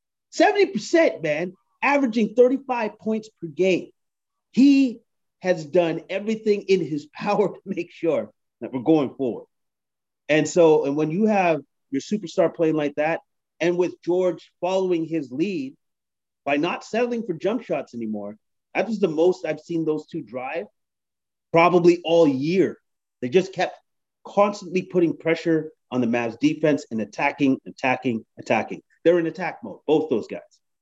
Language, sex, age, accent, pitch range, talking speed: English, male, 30-49, American, 140-205 Hz, 150 wpm